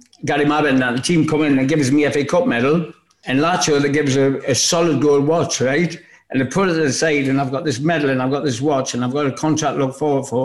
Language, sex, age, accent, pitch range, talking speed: English, male, 60-79, British, 130-160 Hz, 275 wpm